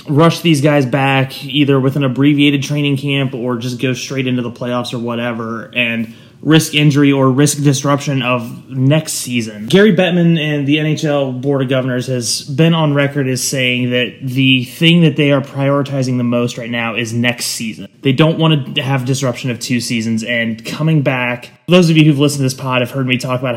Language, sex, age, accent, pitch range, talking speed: English, male, 20-39, American, 120-145 Hz, 205 wpm